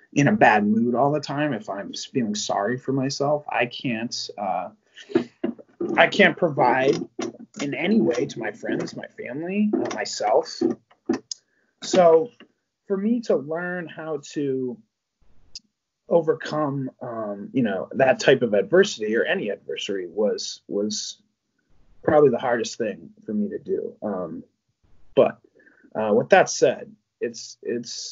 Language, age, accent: English, 30-49, American